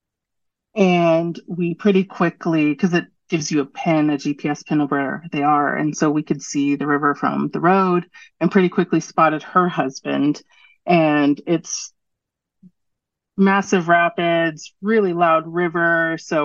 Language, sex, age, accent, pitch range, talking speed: English, female, 30-49, American, 150-180 Hz, 150 wpm